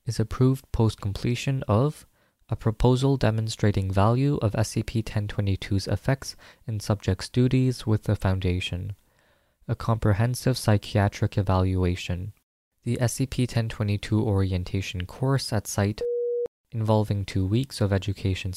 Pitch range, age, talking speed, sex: 100-125 Hz, 20-39, 105 wpm, male